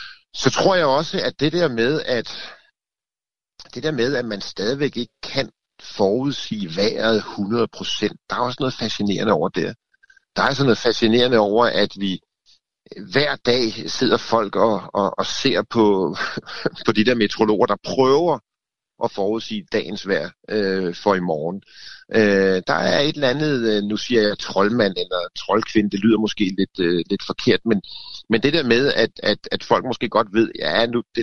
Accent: native